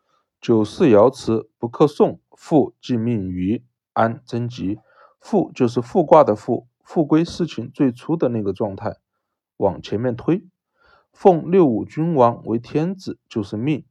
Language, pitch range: Chinese, 110-140 Hz